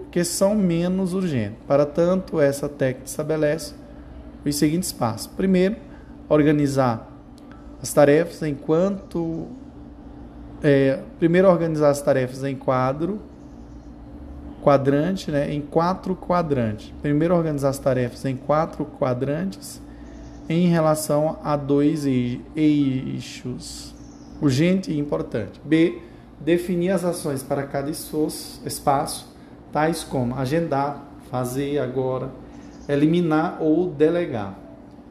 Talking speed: 100 wpm